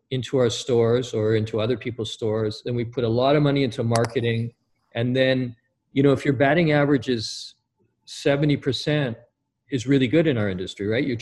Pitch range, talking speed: 110-145 Hz, 185 wpm